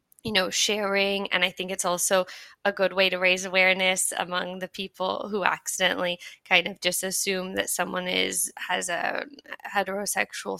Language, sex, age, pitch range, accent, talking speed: English, female, 10-29, 185-205 Hz, American, 165 wpm